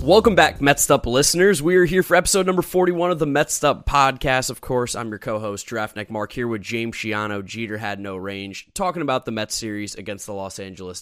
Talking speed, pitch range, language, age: 210 wpm, 105-145 Hz, English, 20-39